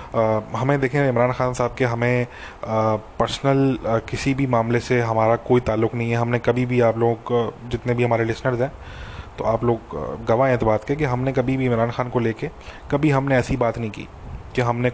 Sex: male